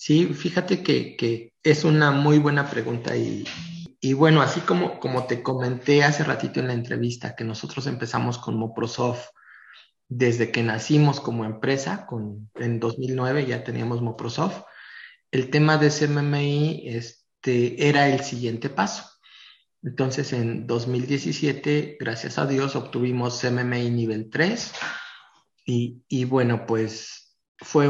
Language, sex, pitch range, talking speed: Spanish, male, 120-145 Hz, 130 wpm